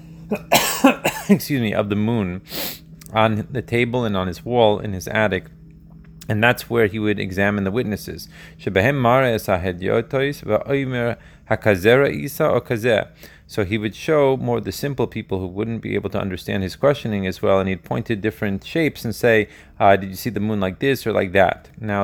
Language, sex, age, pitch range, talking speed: Hebrew, male, 30-49, 100-125 Hz, 165 wpm